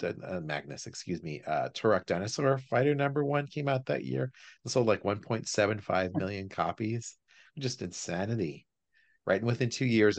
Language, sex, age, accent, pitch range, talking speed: English, male, 40-59, American, 90-115 Hz, 155 wpm